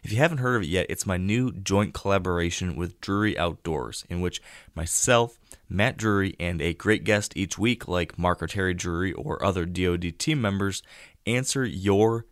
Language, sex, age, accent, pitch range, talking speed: English, male, 20-39, American, 90-110 Hz, 185 wpm